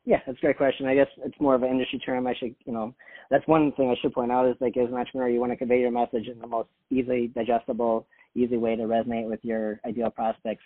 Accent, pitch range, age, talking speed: American, 120-140 Hz, 40-59, 275 wpm